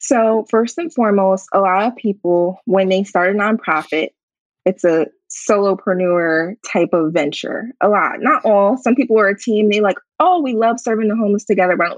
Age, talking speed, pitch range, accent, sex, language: 20-39, 195 wpm, 185-235 Hz, American, female, English